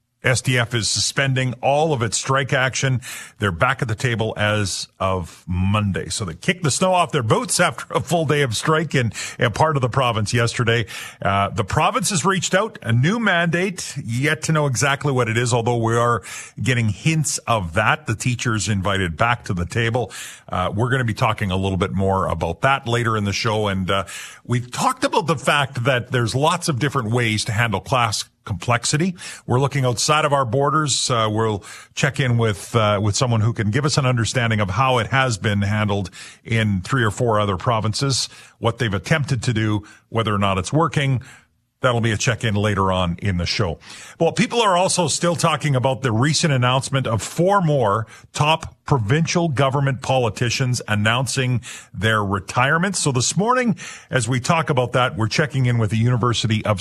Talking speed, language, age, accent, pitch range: 195 wpm, English, 40-59, American, 110-145 Hz